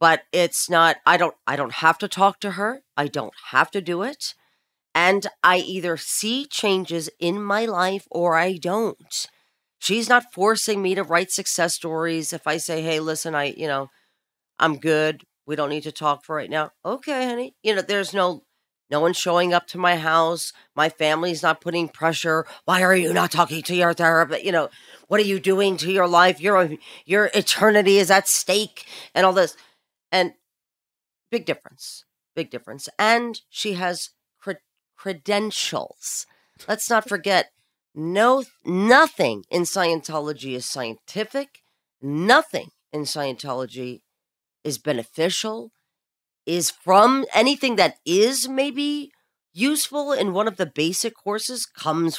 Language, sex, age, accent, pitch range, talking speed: English, female, 40-59, American, 160-205 Hz, 160 wpm